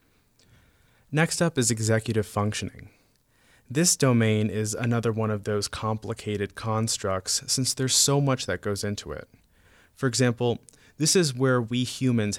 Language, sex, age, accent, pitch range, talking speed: English, male, 30-49, American, 95-120 Hz, 140 wpm